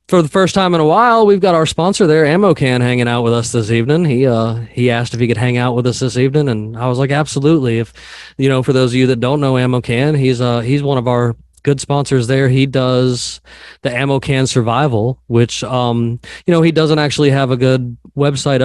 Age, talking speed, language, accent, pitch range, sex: 20-39, 245 wpm, English, American, 120-135 Hz, male